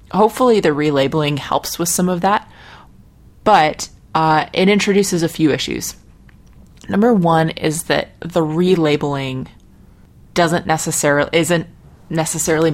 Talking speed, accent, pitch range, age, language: 120 wpm, American, 140-170 Hz, 20-39, English